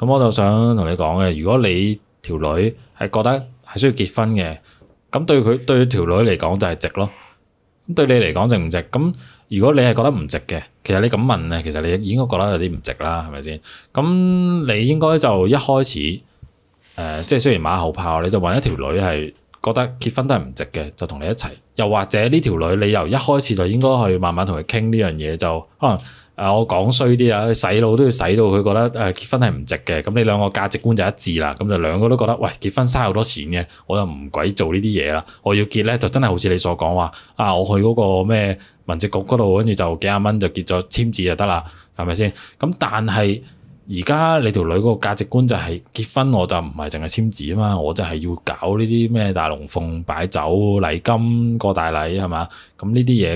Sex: male